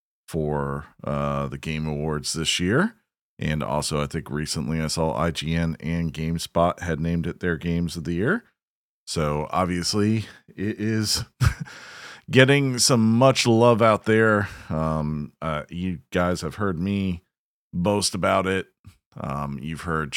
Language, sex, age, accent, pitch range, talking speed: English, male, 40-59, American, 80-115 Hz, 145 wpm